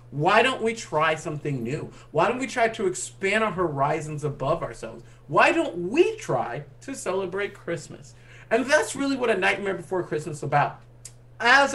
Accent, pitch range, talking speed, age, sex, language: American, 155-215 Hz, 175 wpm, 40-59, male, English